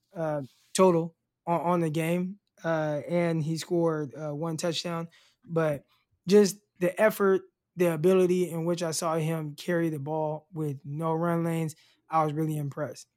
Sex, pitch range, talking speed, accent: male, 155-190 Hz, 160 wpm, American